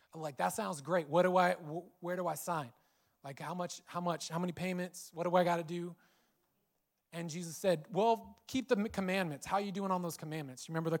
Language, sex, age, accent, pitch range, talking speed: English, male, 20-39, American, 155-185 Hz, 235 wpm